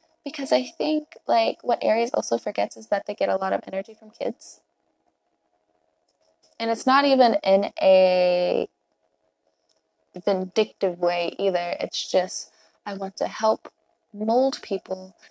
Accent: American